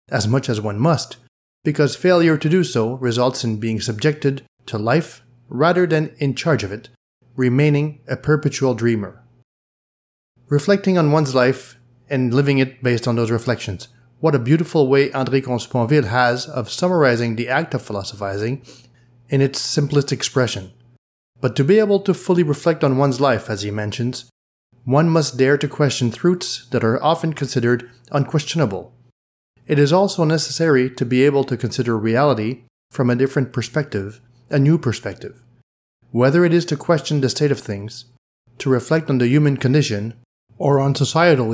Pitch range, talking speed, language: 120-150 Hz, 165 wpm, English